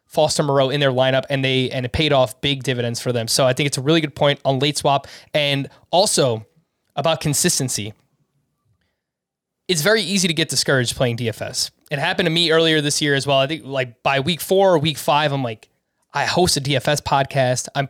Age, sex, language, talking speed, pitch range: 20-39, male, English, 215 wpm, 135-165 Hz